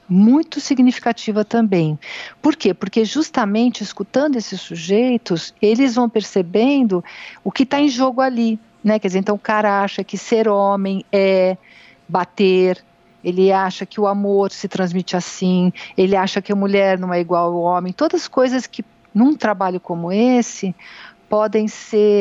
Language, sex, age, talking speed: Portuguese, female, 50-69, 160 wpm